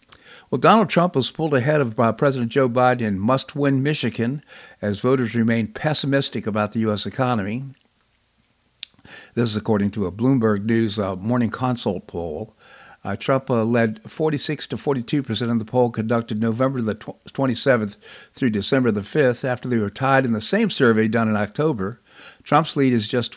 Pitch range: 110-135 Hz